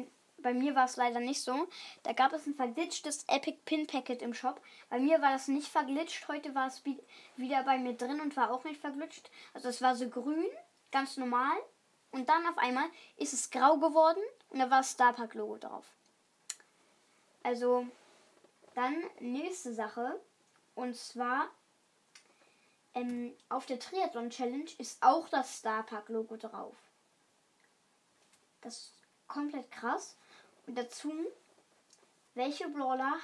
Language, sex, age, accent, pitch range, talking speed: German, female, 10-29, German, 245-300 Hz, 135 wpm